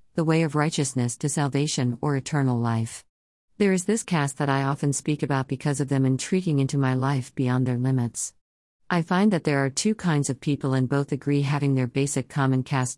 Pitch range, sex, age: 130-150 Hz, female, 50-69